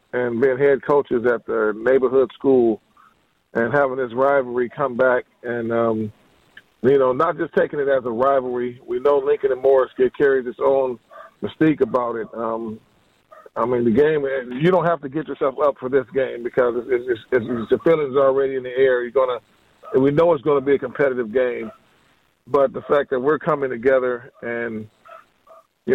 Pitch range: 125-140 Hz